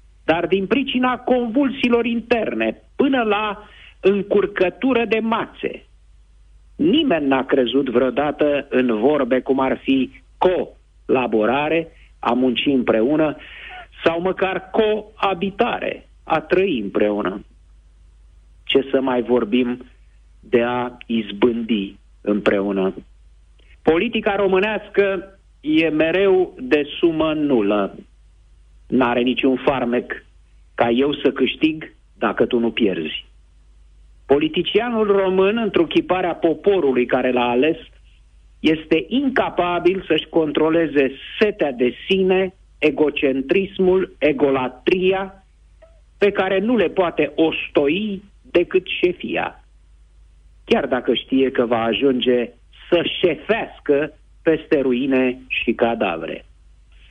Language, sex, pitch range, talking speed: Romanian, male, 120-190 Hz, 100 wpm